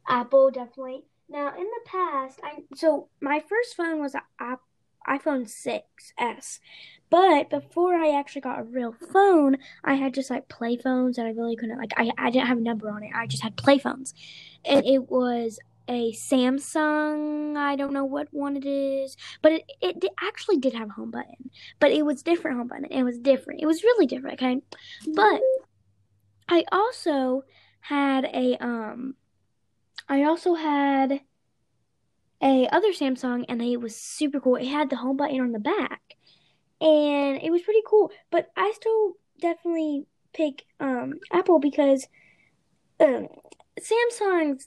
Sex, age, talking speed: female, 10-29, 165 wpm